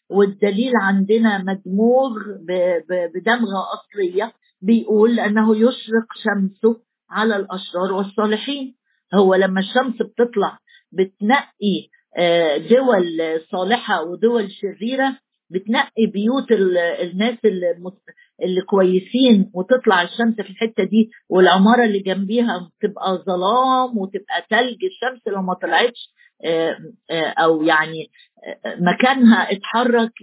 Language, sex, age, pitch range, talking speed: Arabic, female, 50-69, 195-240 Hz, 90 wpm